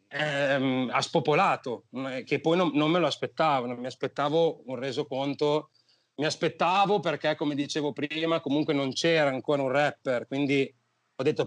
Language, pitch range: Italian, 130-150 Hz